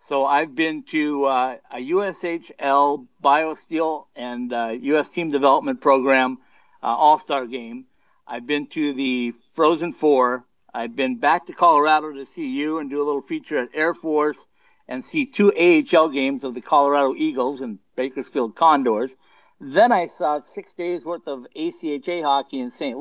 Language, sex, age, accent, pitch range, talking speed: English, male, 60-79, American, 140-185 Hz, 160 wpm